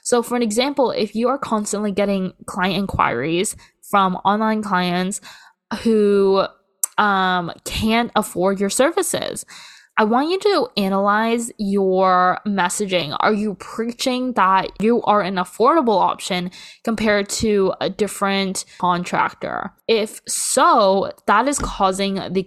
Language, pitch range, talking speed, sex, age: English, 185-225 Hz, 125 wpm, female, 10-29